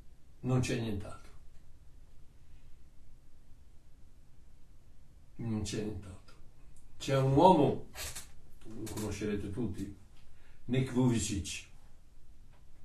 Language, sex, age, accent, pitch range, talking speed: Italian, male, 60-79, native, 100-135 Hz, 65 wpm